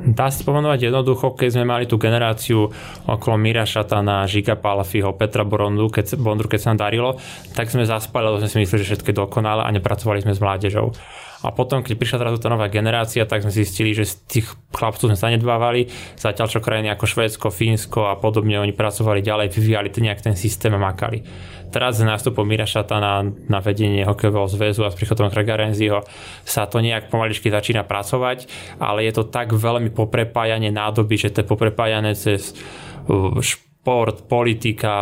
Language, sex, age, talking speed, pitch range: Slovak, male, 20-39, 180 wpm, 105-115 Hz